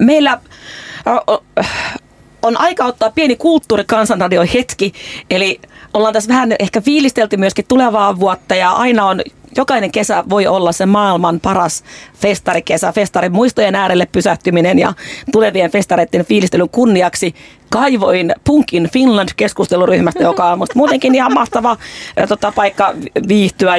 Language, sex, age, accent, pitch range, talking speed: Finnish, female, 30-49, native, 185-245 Hz, 120 wpm